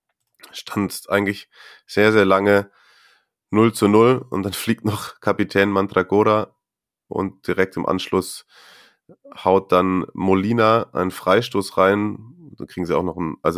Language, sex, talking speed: German, male, 135 wpm